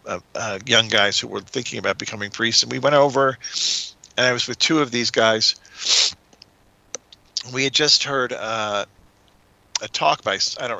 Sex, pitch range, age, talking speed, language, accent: male, 105-135 Hz, 50-69, 180 wpm, English, American